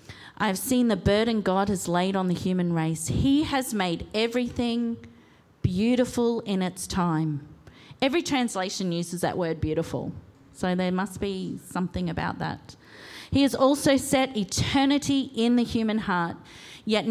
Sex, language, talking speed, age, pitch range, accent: female, English, 145 wpm, 40-59, 180-255 Hz, Australian